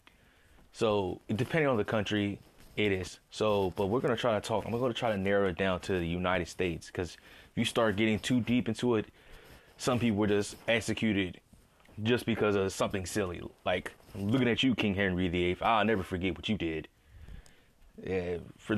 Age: 20-39